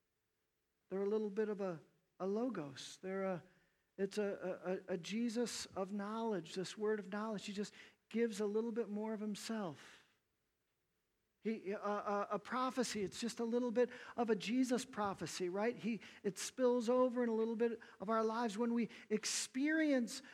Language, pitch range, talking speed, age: English, 190-245 Hz, 175 wpm, 50-69